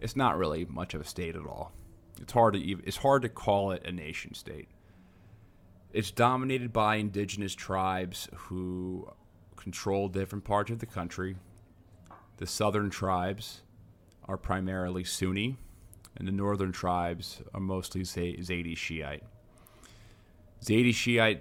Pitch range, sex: 90-105 Hz, male